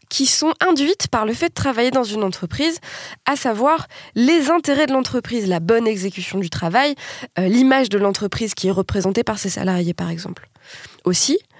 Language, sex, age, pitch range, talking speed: French, female, 20-39, 185-280 Hz, 180 wpm